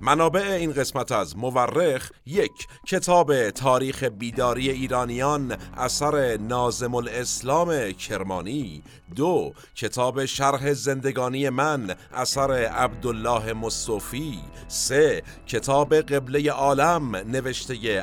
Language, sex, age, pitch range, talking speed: Persian, male, 50-69, 115-145 Hz, 90 wpm